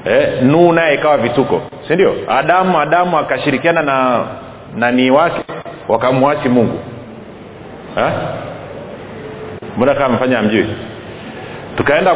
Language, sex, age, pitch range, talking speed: Swahili, male, 40-59, 130-160 Hz, 95 wpm